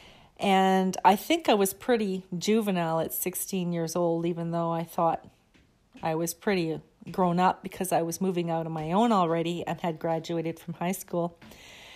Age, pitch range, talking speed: 40-59, 170-205 Hz, 175 wpm